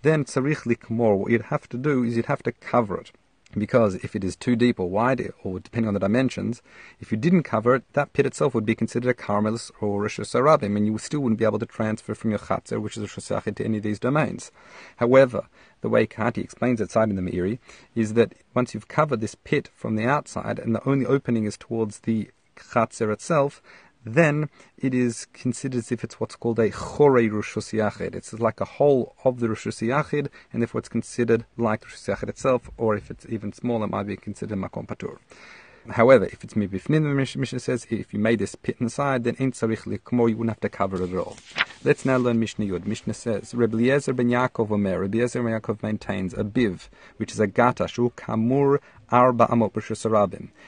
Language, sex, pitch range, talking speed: English, male, 105-125 Hz, 210 wpm